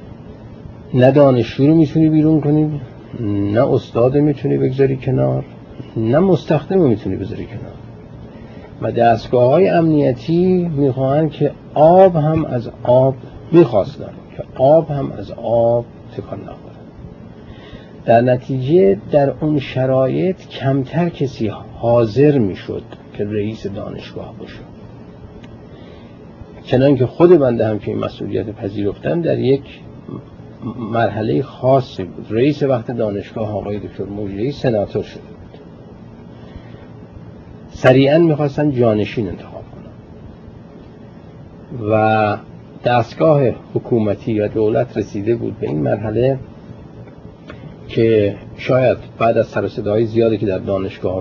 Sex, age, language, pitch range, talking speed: male, 50-69, Persian, 110-140 Hz, 110 wpm